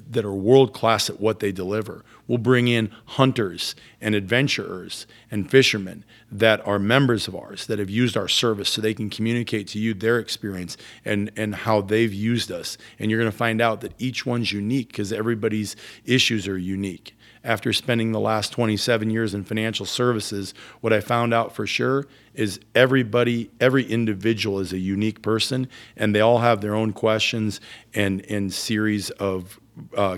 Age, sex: 40-59, male